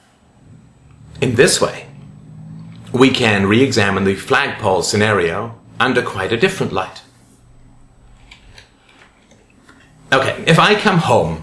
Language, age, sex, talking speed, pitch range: English, 30-49, male, 105 wpm, 110-160 Hz